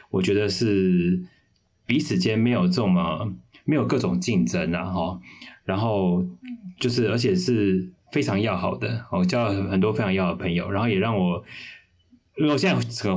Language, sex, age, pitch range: Chinese, male, 20-39, 90-105 Hz